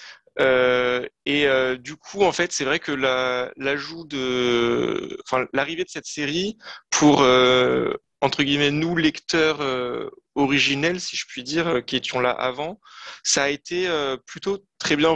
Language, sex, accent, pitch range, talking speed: French, male, French, 125-165 Hz, 160 wpm